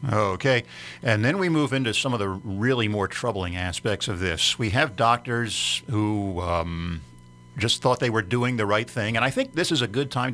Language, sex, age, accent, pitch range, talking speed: English, male, 50-69, American, 100-130 Hz, 210 wpm